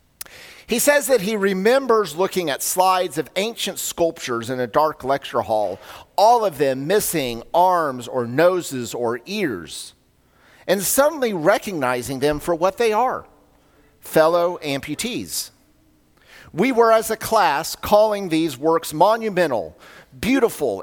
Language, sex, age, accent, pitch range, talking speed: English, male, 50-69, American, 145-195 Hz, 130 wpm